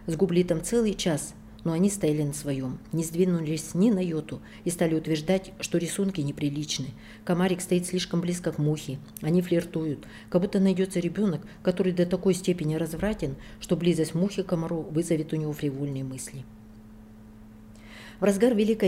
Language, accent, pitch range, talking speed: Russian, native, 150-185 Hz, 160 wpm